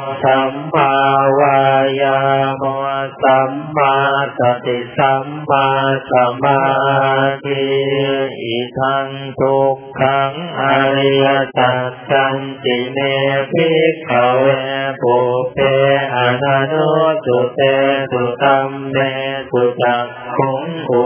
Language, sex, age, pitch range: Thai, male, 50-69, 135-140 Hz